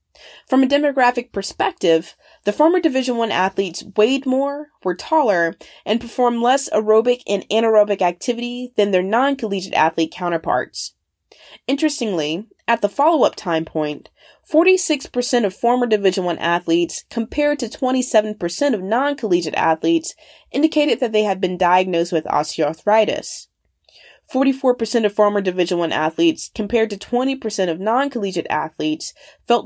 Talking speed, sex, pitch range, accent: 130 wpm, female, 180-250 Hz, American